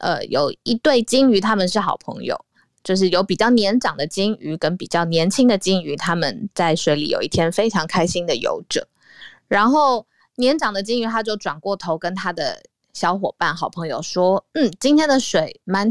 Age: 20-39